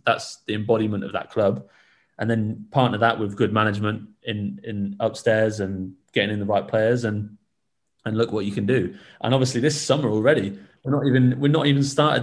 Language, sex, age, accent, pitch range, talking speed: English, male, 20-39, British, 100-115 Hz, 200 wpm